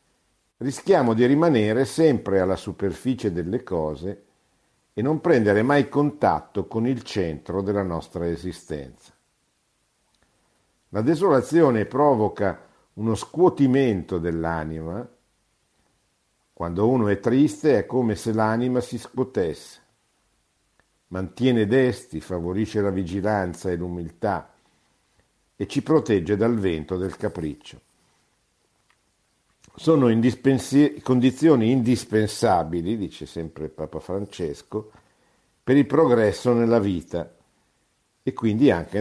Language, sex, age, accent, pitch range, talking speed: Italian, male, 50-69, native, 90-125 Hz, 100 wpm